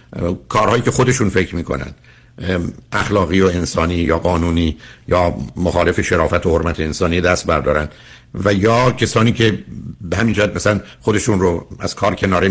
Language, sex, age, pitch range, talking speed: Persian, male, 60-79, 85-115 Hz, 150 wpm